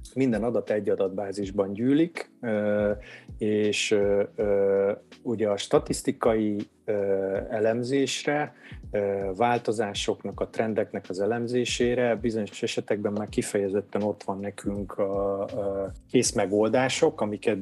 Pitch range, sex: 100-120 Hz, male